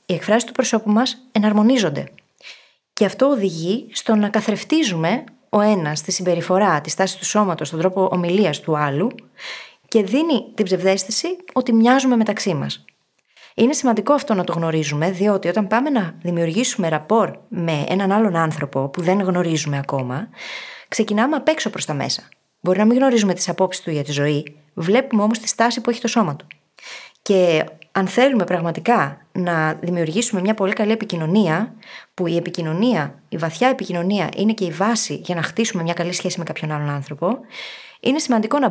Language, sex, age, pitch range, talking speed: Greek, female, 20-39, 165-225 Hz, 170 wpm